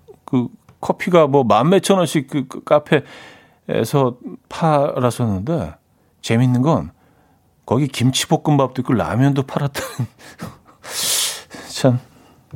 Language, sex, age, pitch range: Korean, male, 40-59, 110-150 Hz